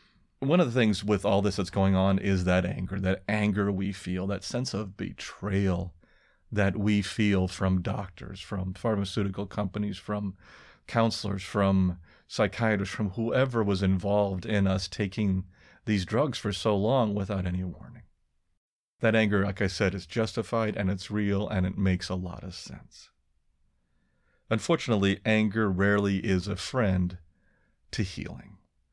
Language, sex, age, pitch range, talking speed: English, male, 40-59, 95-105 Hz, 150 wpm